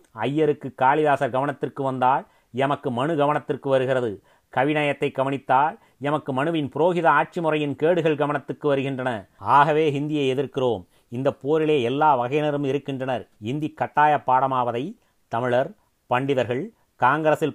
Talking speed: 105 wpm